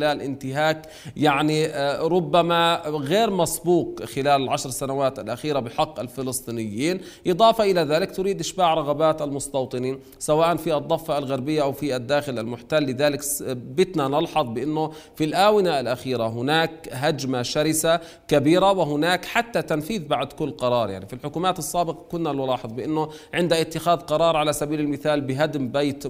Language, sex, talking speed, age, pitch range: Arabic, male, 135 wpm, 40-59, 135-160 Hz